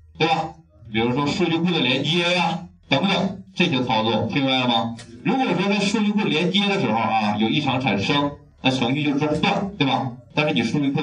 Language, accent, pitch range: Chinese, native, 115-160 Hz